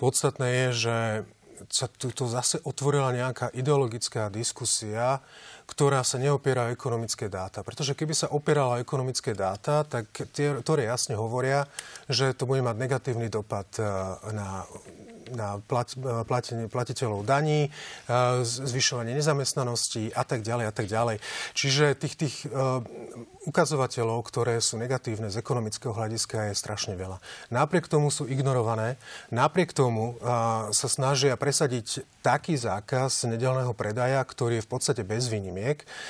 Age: 30-49